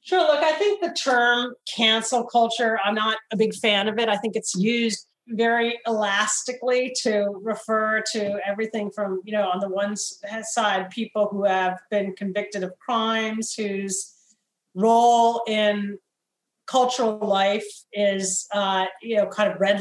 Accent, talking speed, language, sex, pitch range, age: American, 155 wpm, English, female, 200-230 Hz, 40-59